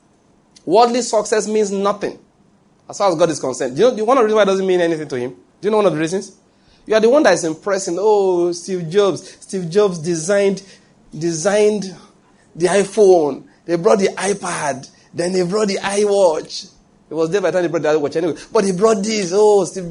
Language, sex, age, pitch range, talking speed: English, male, 30-49, 145-200 Hz, 225 wpm